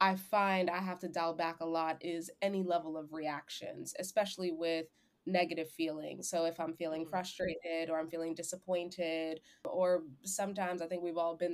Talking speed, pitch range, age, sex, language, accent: 175 wpm, 165-185 Hz, 20-39, female, English, American